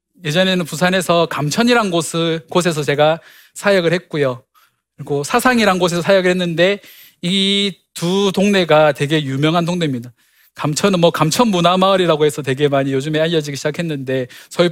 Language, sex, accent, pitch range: Korean, male, native, 150-195 Hz